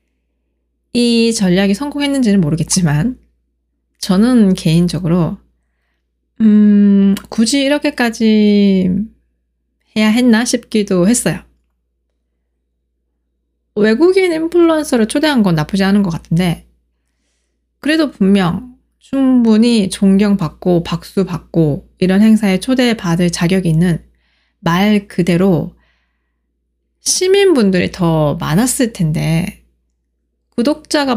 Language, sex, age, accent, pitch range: Korean, female, 20-39, native, 155-225 Hz